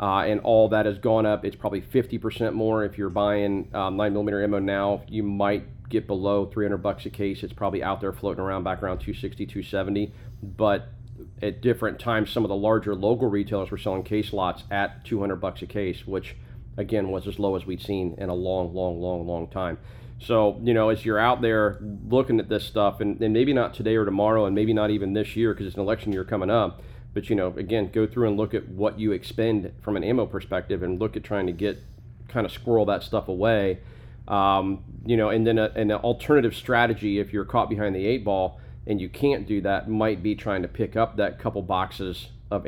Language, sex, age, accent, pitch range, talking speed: English, male, 40-59, American, 95-115 Hz, 225 wpm